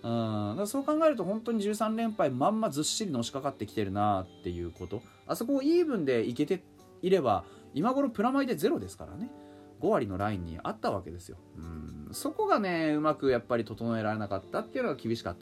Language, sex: Japanese, male